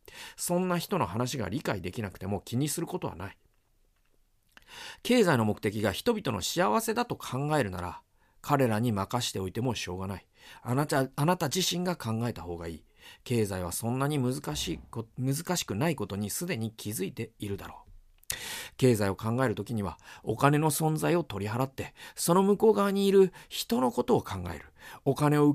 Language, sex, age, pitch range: Japanese, male, 40-59, 105-165 Hz